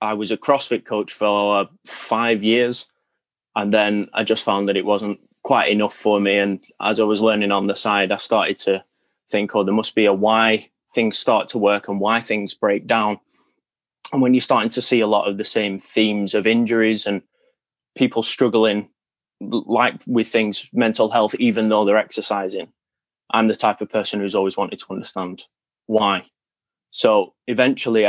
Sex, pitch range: male, 100-110 Hz